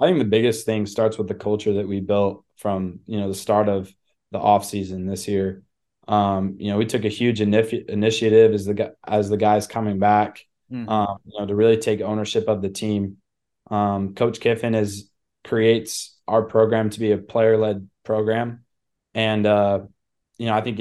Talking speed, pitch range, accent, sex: 200 wpm, 105-110 Hz, American, male